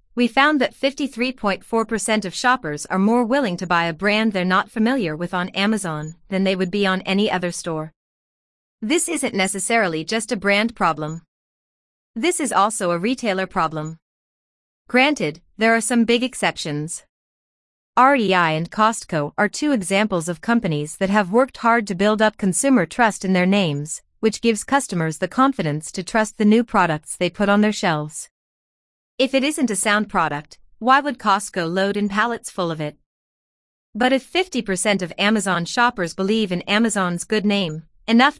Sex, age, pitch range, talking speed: female, 30-49, 180-235 Hz, 170 wpm